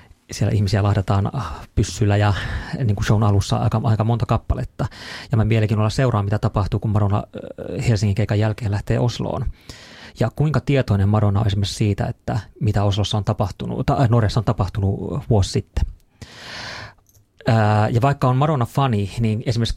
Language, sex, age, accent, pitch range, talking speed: Finnish, male, 30-49, native, 100-120 Hz, 150 wpm